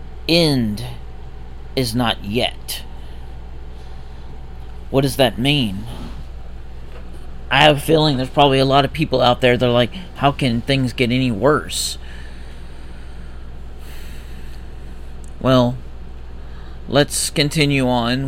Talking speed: 110 wpm